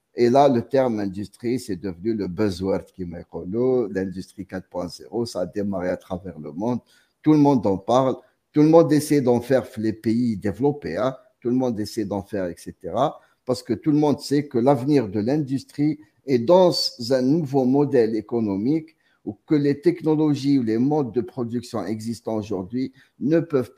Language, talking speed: Arabic, 185 wpm